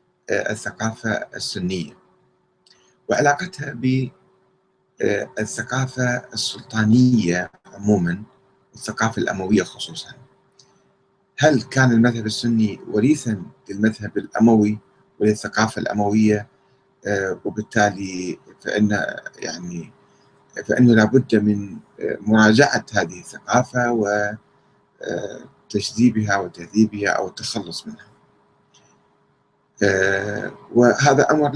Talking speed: 65 wpm